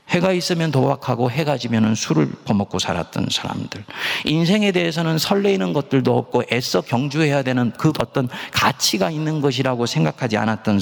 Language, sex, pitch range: Korean, male, 110-165 Hz